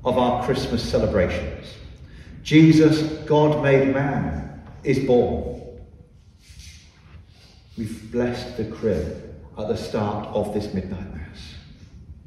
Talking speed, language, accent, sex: 105 wpm, English, British, male